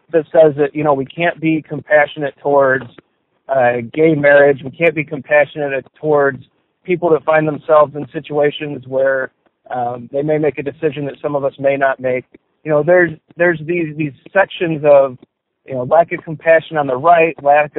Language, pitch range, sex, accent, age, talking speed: English, 140-165 Hz, male, American, 40-59, 185 wpm